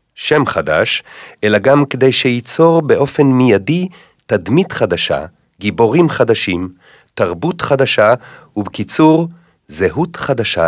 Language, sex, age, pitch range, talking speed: Hebrew, male, 40-59, 105-145 Hz, 95 wpm